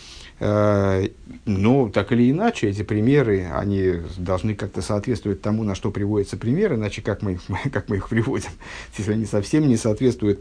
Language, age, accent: Russian, 50-69, native